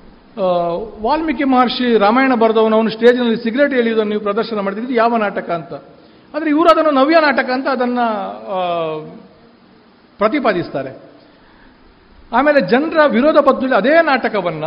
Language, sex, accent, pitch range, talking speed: Kannada, male, native, 185-245 Hz, 115 wpm